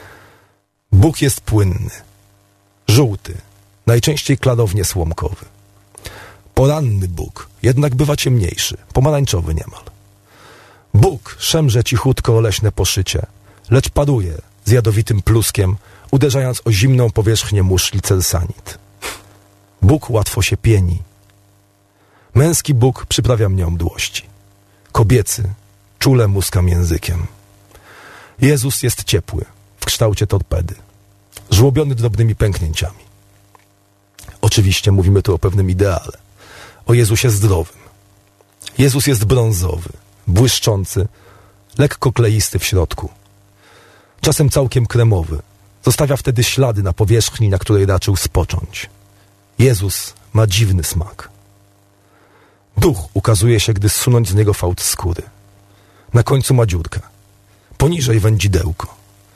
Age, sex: 40-59, male